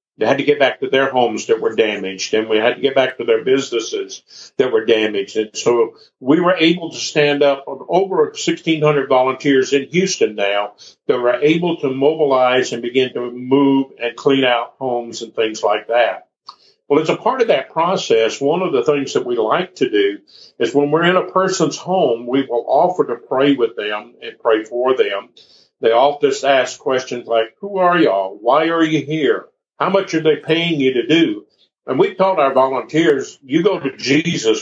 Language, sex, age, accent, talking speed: English, male, 50-69, American, 205 wpm